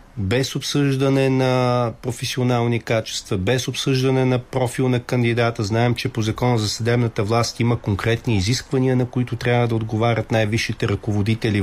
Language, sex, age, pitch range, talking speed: Bulgarian, male, 40-59, 105-130 Hz, 145 wpm